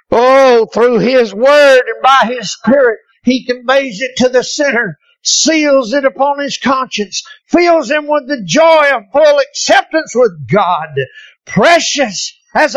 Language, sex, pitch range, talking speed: English, male, 240-305 Hz, 145 wpm